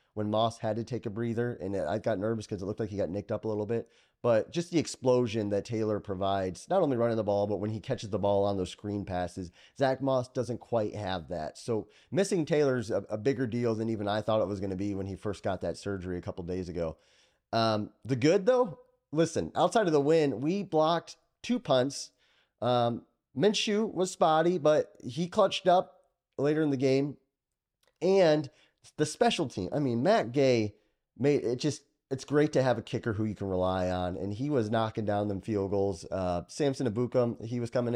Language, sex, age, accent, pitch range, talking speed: English, male, 30-49, American, 100-135 Hz, 220 wpm